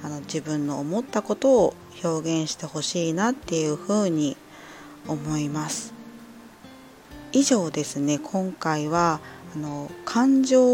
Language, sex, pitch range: Japanese, female, 150-195 Hz